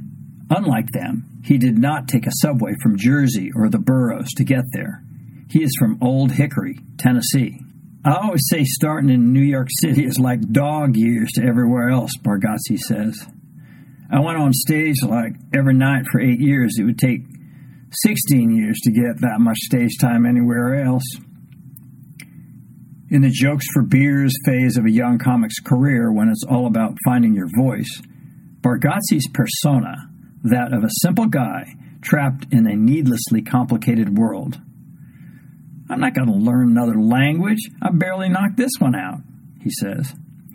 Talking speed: 160 wpm